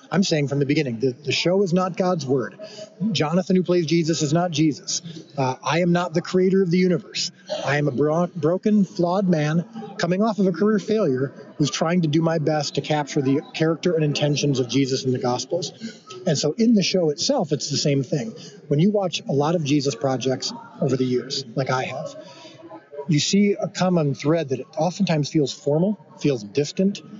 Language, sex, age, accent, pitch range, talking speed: English, male, 30-49, American, 140-185 Hz, 205 wpm